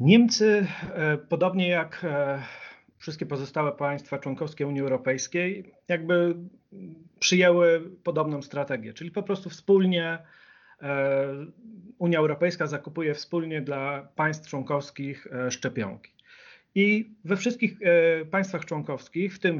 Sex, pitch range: male, 145-175 Hz